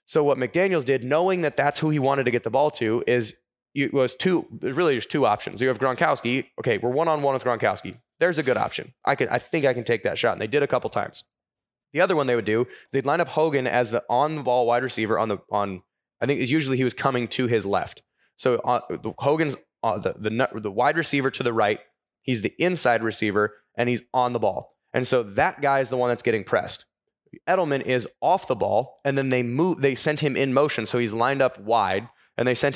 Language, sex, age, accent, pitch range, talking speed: English, male, 20-39, American, 120-140 Hz, 250 wpm